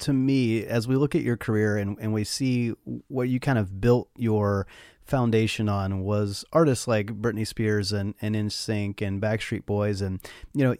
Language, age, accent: English, 30-49, American